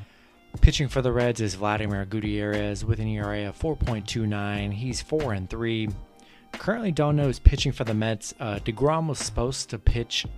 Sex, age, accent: male, 30-49, American